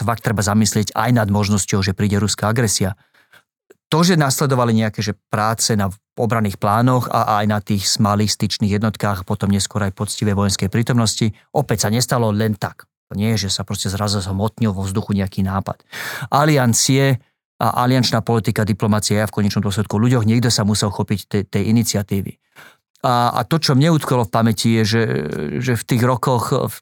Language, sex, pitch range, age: Slovak, male, 105-120 Hz, 40-59